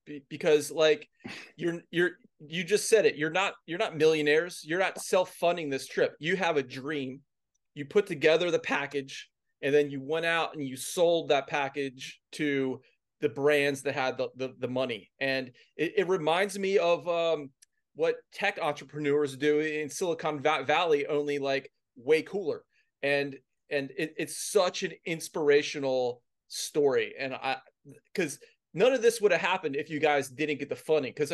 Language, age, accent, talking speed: English, 30-49, American, 170 wpm